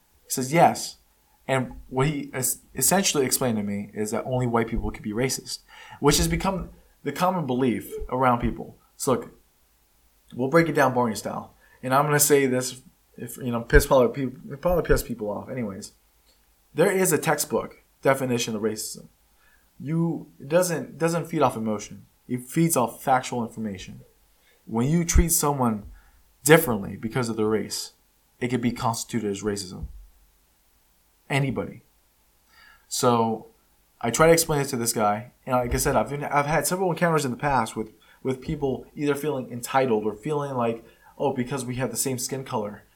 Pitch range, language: 110-140 Hz, English